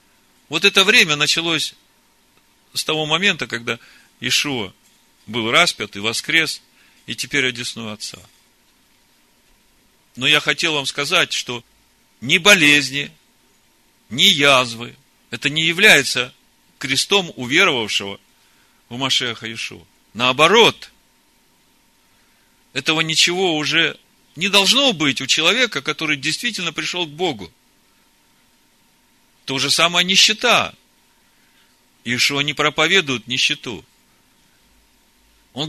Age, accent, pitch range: 40-59, native, 135-205 Hz